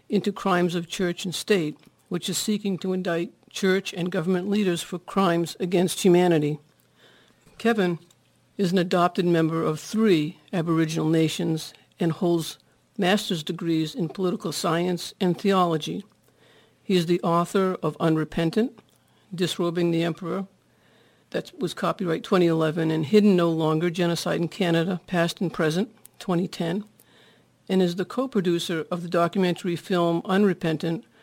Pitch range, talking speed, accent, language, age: 165-190 Hz, 135 wpm, American, English, 60-79